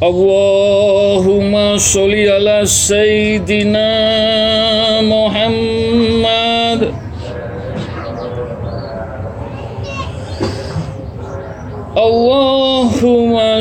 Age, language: 60-79, Indonesian